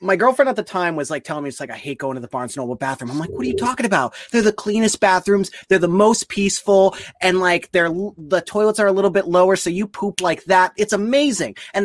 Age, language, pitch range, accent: 30-49, English, 145-205 Hz, American